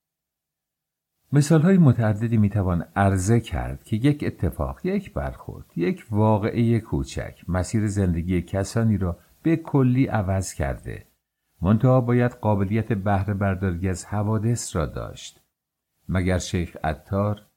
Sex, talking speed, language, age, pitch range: male, 120 wpm, English, 50-69, 95-110 Hz